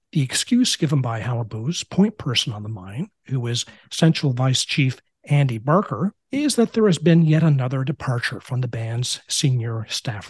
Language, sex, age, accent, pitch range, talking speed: English, male, 50-69, American, 130-165 Hz, 175 wpm